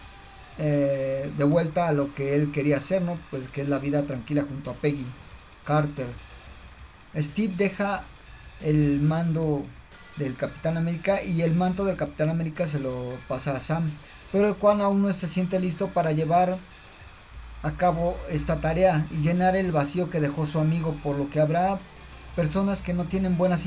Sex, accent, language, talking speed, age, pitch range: male, Mexican, Spanish, 175 wpm, 40-59, 145-180 Hz